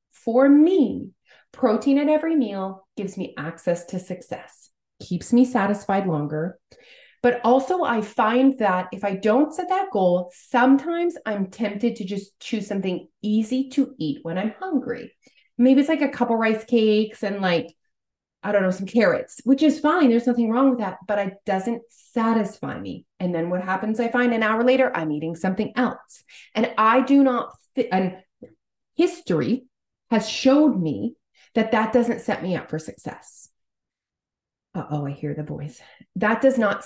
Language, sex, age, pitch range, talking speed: English, female, 30-49, 185-245 Hz, 175 wpm